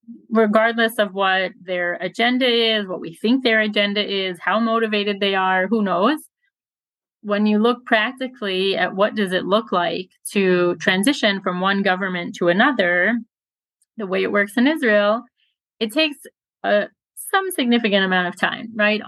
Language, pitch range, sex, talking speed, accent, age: English, 190-235 Hz, female, 160 wpm, American, 30-49